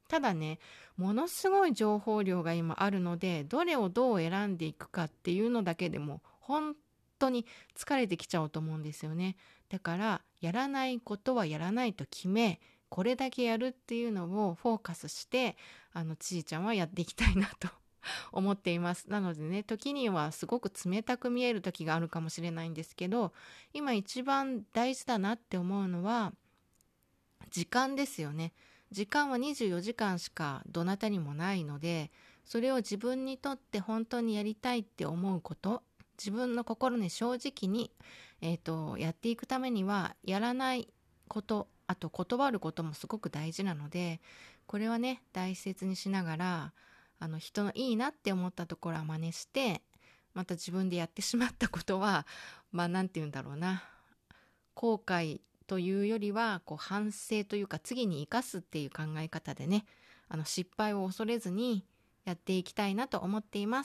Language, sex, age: Japanese, female, 20-39